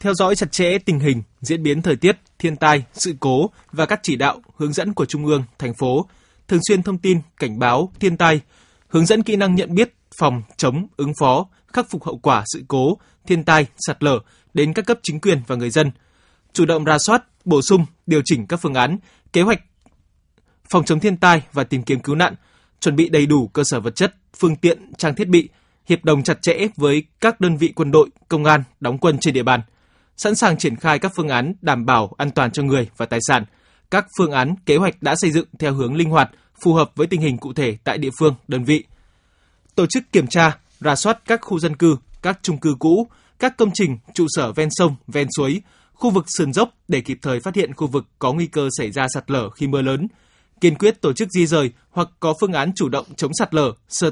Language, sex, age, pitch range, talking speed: Vietnamese, male, 20-39, 140-180 Hz, 235 wpm